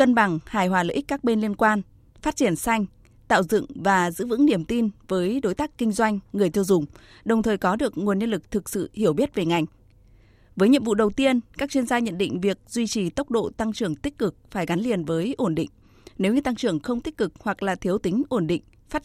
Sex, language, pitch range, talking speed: female, Vietnamese, 180-235 Hz, 250 wpm